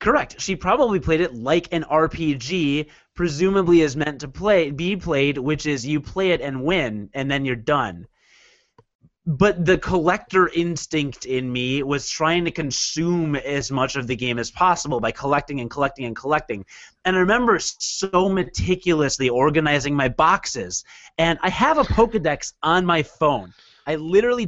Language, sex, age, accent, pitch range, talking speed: English, male, 30-49, American, 140-185 Hz, 165 wpm